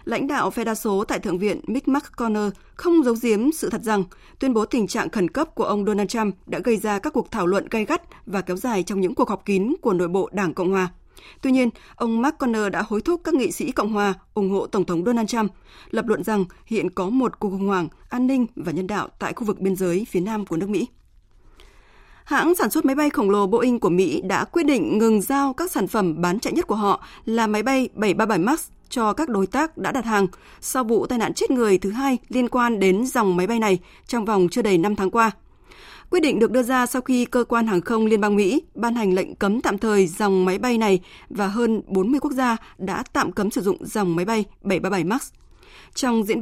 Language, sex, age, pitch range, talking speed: Vietnamese, female, 20-39, 195-255 Hz, 245 wpm